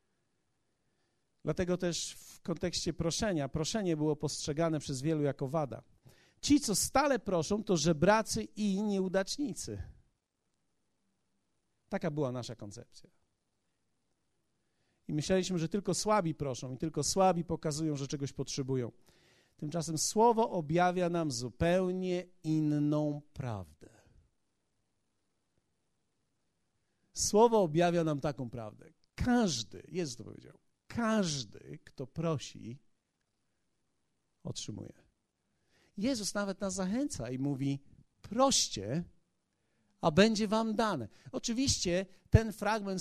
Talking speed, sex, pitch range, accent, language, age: 100 wpm, male, 150-200 Hz, native, Polish, 50-69